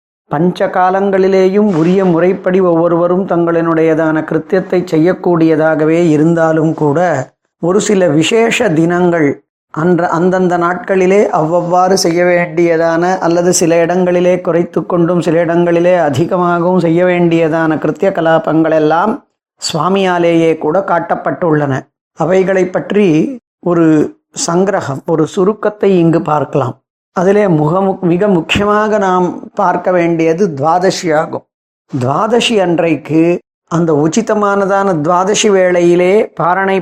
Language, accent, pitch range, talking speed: Tamil, native, 160-190 Hz, 95 wpm